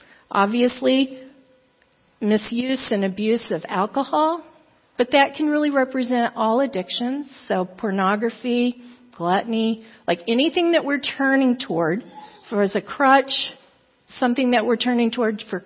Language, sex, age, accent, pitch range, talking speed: English, female, 50-69, American, 210-265 Hz, 125 wpm